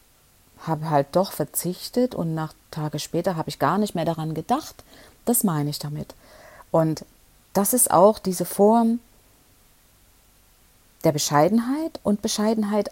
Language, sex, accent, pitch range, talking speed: German, female, German, 155-200 Hz, 135 wpm